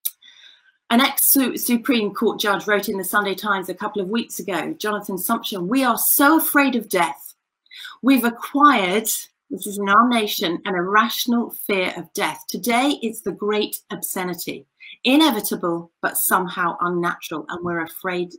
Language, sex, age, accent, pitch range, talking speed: English, female, 40-59, British, 190-260 Hz, 155 wpm